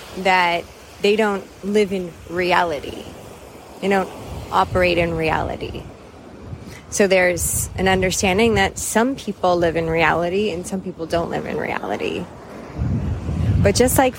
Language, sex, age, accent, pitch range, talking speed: English, female, 20-39, American, 175-210 Hz, 130 wpm